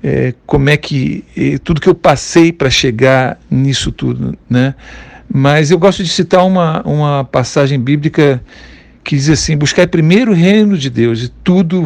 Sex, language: male, Portuguese